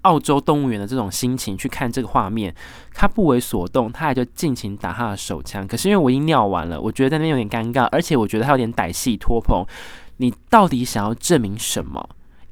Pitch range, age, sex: 100-135 Hz, 20-39, male